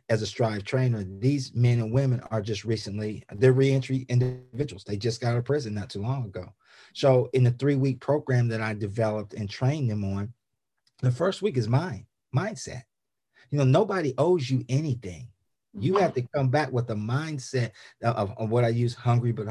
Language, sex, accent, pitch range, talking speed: English, male, American, 110-130 Hz, 195 wpm